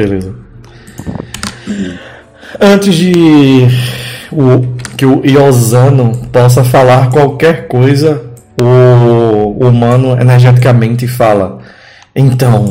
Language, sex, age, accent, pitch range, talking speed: Portuguese, male, 20-39, Brazilian, 115-130 Hz, 75 wpm